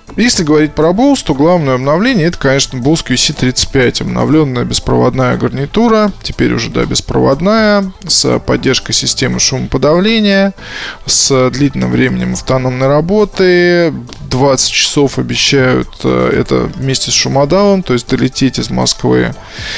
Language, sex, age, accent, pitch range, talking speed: Russian, male, 20-39, native, 125-170 Hz, 115 wpm